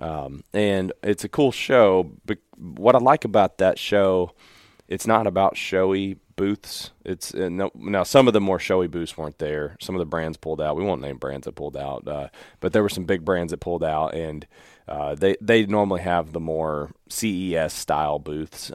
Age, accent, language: 30-49, American, English